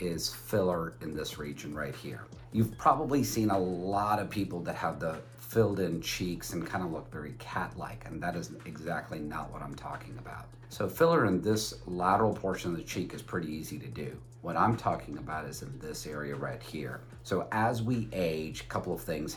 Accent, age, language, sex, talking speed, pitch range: American, 50-69, English, male, 210 wpm, 80-110 Hz